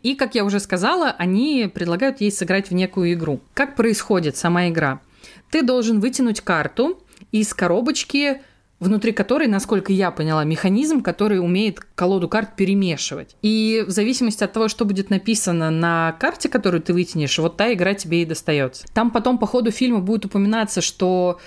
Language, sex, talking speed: Russian, female, 170 wpm